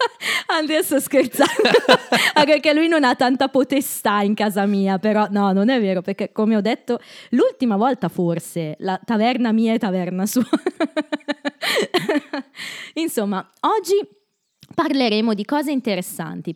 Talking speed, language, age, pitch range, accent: 130 wpm, Italian, 20-39, 170-250 Hz, native